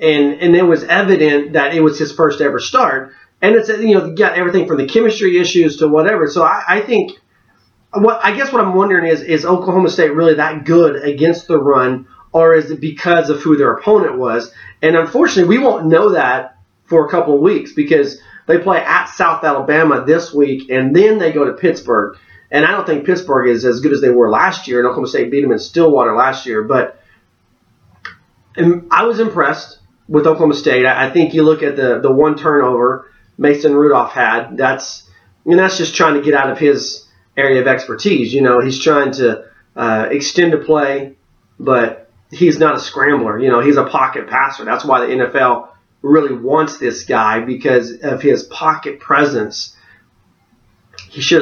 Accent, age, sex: American, 30-49, male